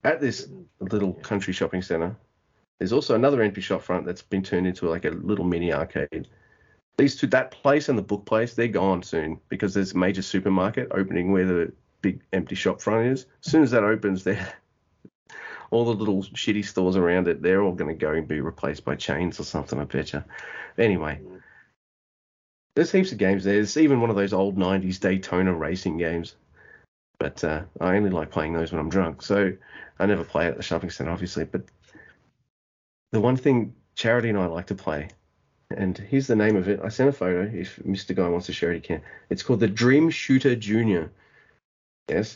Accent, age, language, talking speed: Australian, 30-49, English, 200 wpm